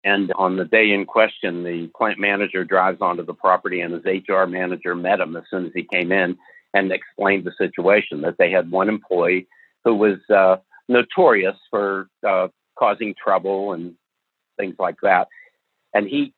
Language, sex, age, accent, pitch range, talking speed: English, male, 60-79, American, 95-110 Hz, 175 wpm